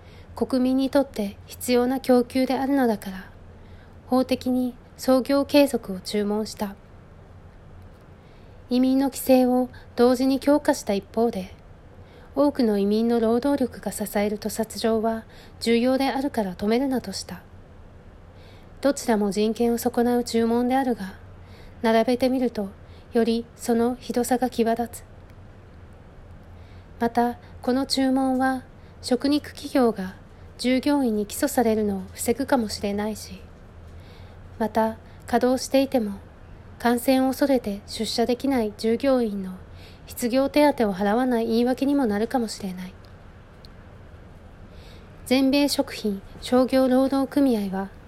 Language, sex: Japanese, female